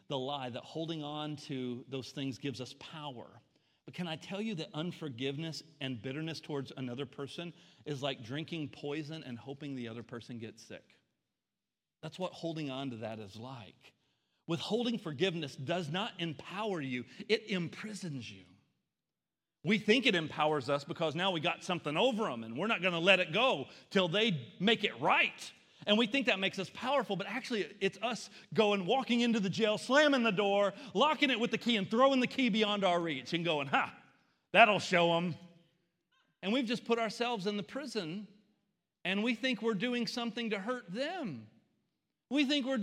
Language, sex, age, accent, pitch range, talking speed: English, male, 40-59, American, 155-240 Hz, 185 wpm